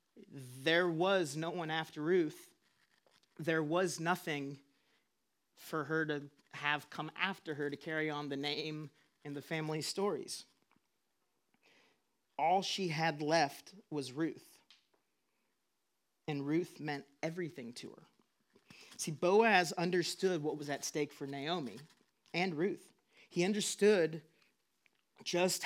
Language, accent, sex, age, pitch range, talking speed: English, American, male, 40-59, 145-170 Hz, 120 wpm